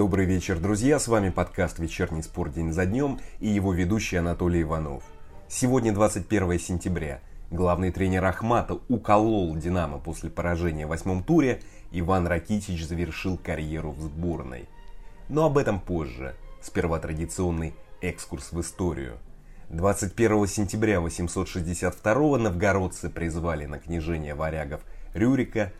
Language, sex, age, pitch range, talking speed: Russian, male, 20-39, 85-105 Hz, 125 wpm